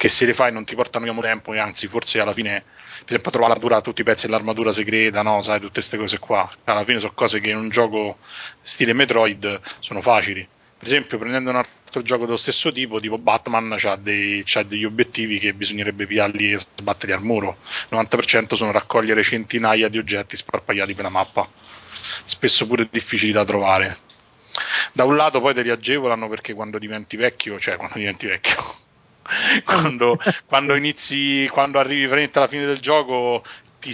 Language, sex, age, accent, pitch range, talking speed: Italian, male, 20-39, native, 105-130 Hz, 190 wpm